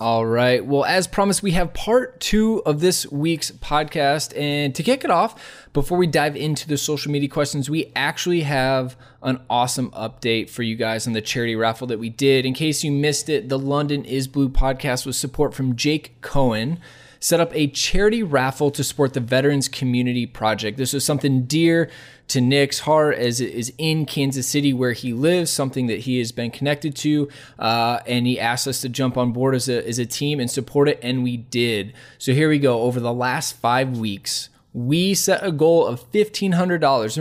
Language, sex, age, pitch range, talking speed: English, male, 20-39, 125-150 Hz, 200 wpm